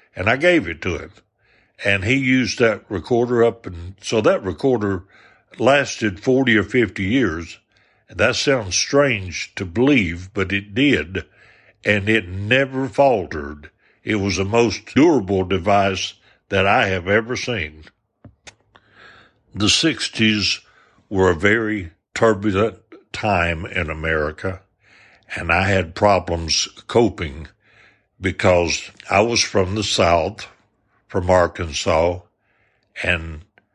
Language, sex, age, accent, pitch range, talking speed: English, male, 60-79, American, 90-110 Hz, 120 wpm